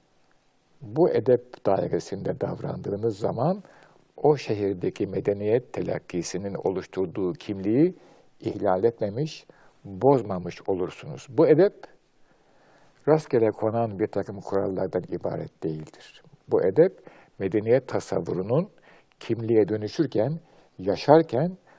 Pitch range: 100-145 Hz